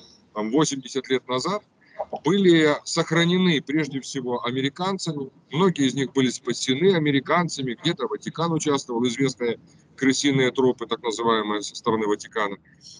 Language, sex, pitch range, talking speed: Russian, male, 125-165 Hz, 115 wpm